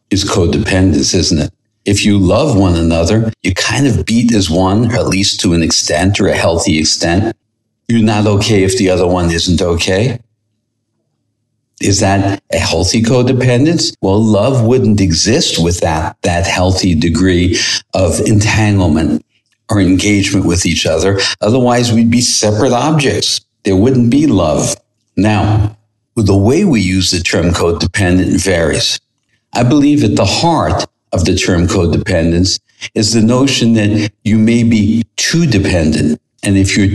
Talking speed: 150 wpm